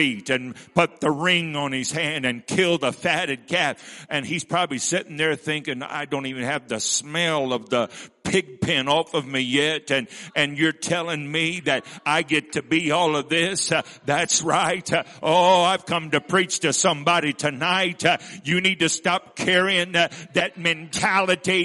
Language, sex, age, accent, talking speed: English, male, 50-69, American, 185 wpm